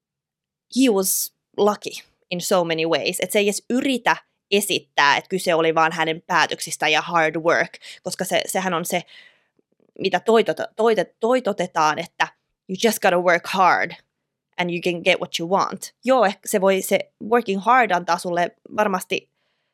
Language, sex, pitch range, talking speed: Finnish, female, 170-215 Hz, 170 wpm